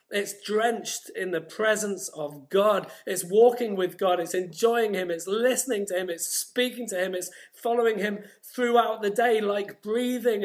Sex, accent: male, British